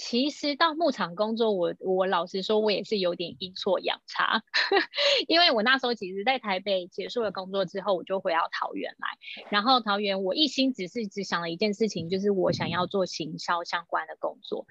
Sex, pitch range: female, 190-265 Hz